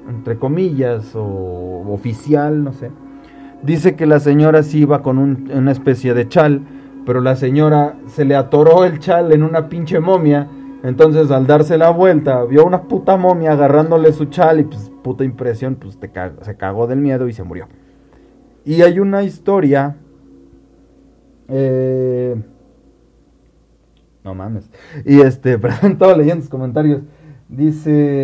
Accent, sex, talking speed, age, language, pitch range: Mexican, male, 150 wpm, 30-49, Spanish, 125-155 Hz